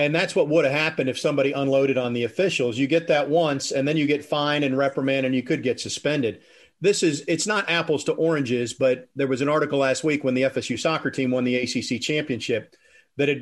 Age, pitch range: 40-59, 135-170 Hz